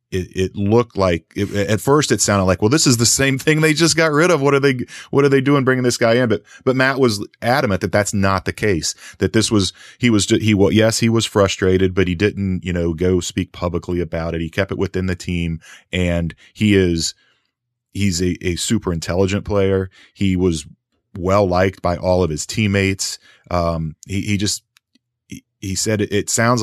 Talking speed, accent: 215 wpm, American